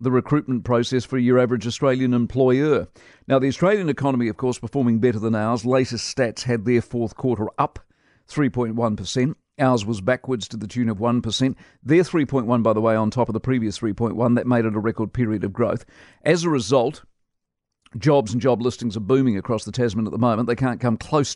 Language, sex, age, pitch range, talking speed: English, male, 50-69, 115-135 Hz, 200 wpm